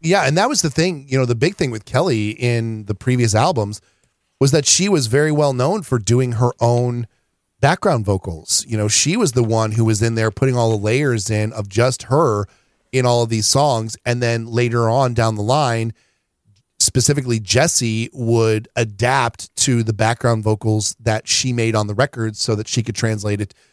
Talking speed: 200 wpm